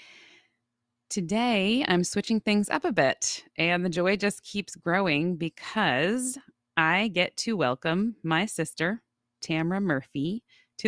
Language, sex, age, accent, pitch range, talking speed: English, female, 20-39, American, 140-195 Hz, 125 wpm